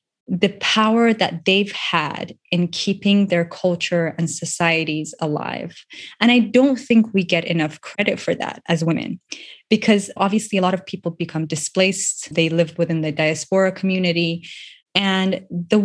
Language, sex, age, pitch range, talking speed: English, female, 20-39, 170-205 Hz, 150 wpm